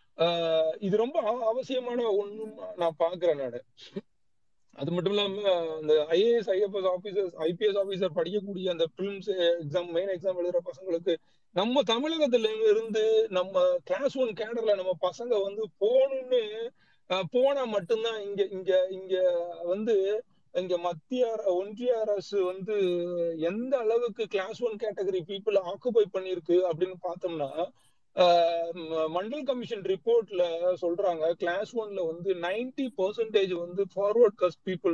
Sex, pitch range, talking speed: male, 175-230 Hz, 95 wpm